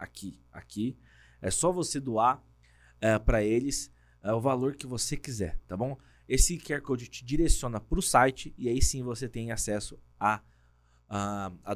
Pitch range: 85-140 Hz